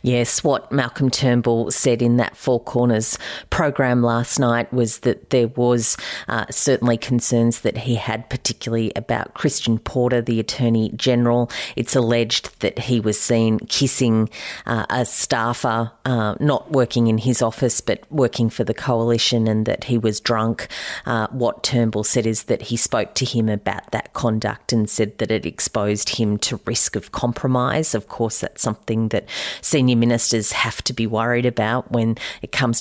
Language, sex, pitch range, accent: English, female, 110-120 Hz, Australian